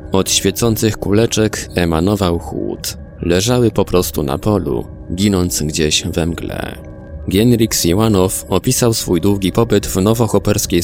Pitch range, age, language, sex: 85-110 Hz, 20-39, Polish, male